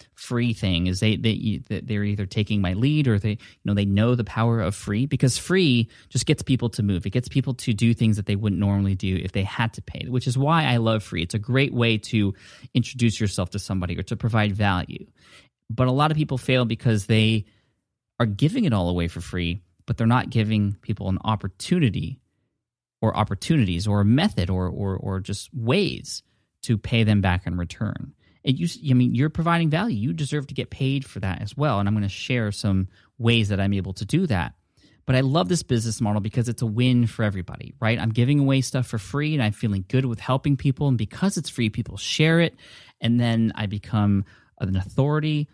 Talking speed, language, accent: 220 wpm, English, American